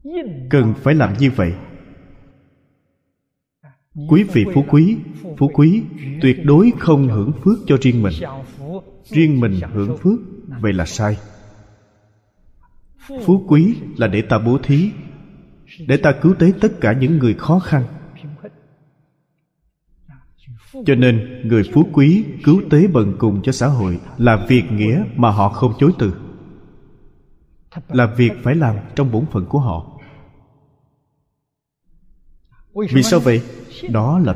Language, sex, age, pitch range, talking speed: Vietnamese, male, 20-39, 115-155 Hz, 135 wpm